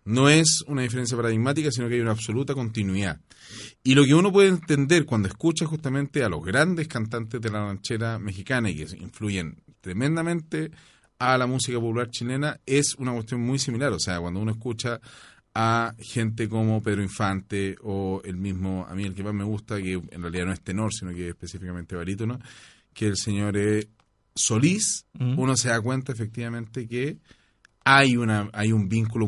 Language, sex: Spanish, male